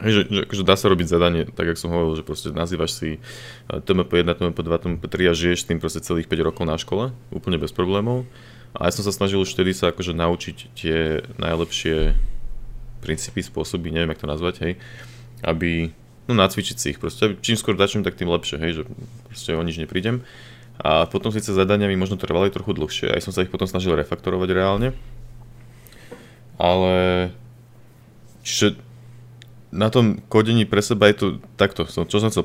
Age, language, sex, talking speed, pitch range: 20-39, Slovak, male, 180 wpm, 85-115 Hz